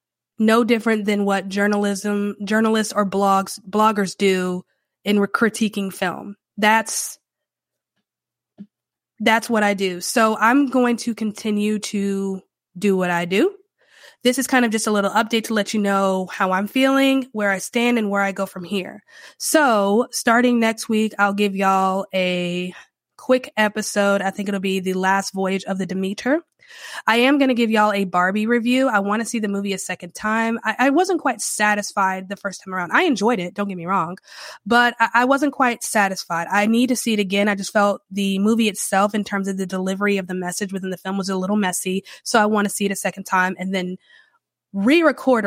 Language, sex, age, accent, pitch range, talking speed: English, female, 20-39, American, 190-225 Hz, 200 wpm